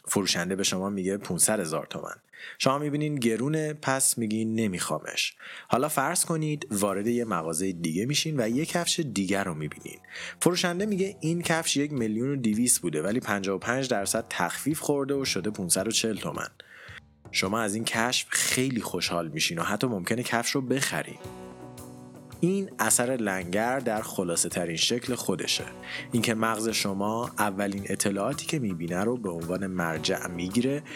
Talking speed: 150 wpm